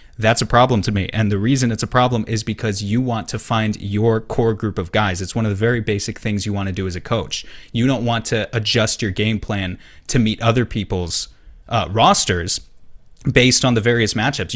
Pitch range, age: 105-120 Hz, 30-49